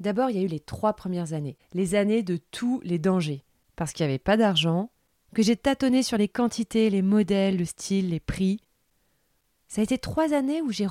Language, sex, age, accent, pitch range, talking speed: French, female, 30-49, French, 170-220 Hz, 220 wpm